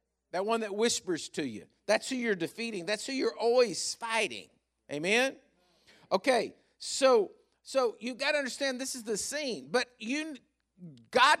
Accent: American